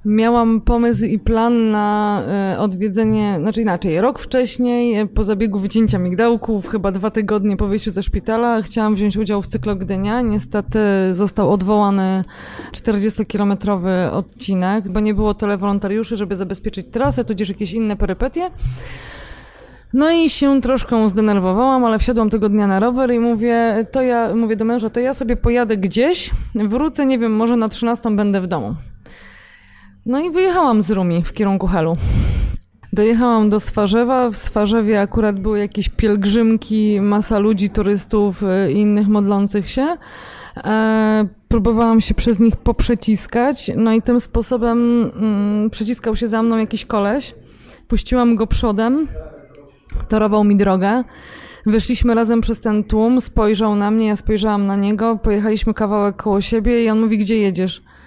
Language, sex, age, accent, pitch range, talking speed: Polish, female, 20-39, native, 205-230 Hz, 150 wpm